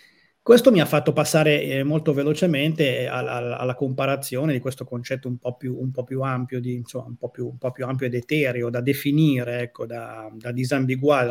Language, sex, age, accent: Italian, male, 30-49, native